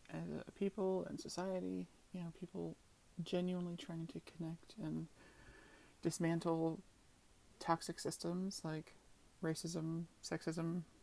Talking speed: 90 wpm